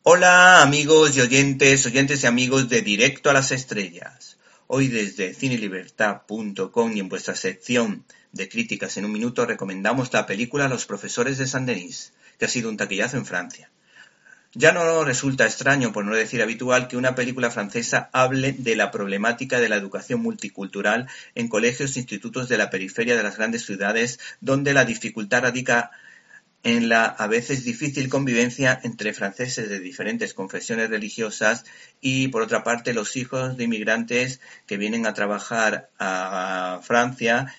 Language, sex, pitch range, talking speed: Spanish, male, 110-130 Hz, 160 wpm